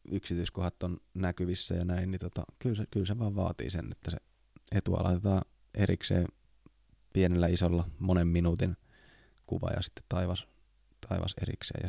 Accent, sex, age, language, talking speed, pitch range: native, male, 20-39, Finnish, 150 wpm, 90-100 Hz